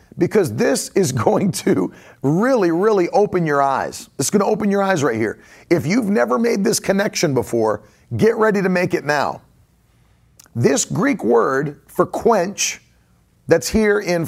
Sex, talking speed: male, 165 wpm